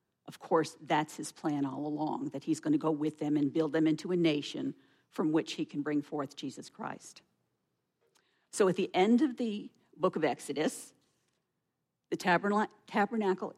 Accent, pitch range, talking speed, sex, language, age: American, 150-175 Hz, 170 wpm, female, English, 50-69